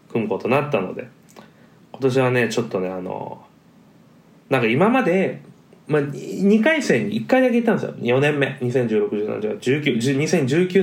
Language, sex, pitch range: Japanese, male, 130-215 Hz